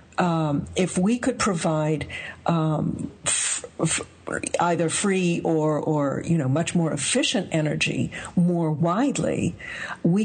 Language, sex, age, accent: English, female, 60-79, American